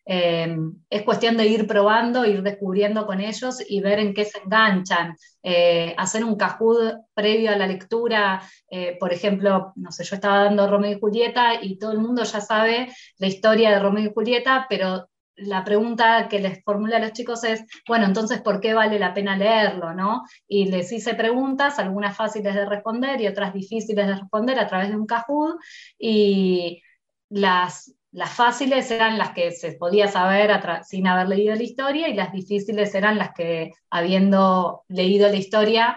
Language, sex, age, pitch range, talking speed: Spanish, female, 20-39, 190-225 Hz, 185 wpm